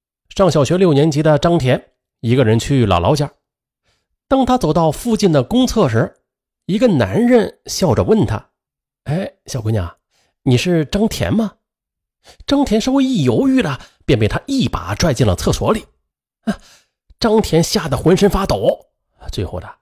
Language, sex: Chinese, male